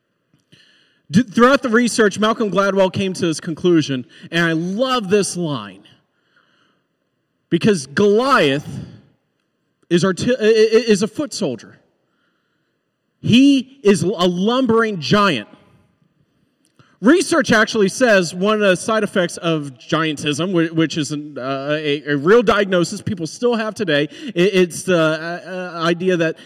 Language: English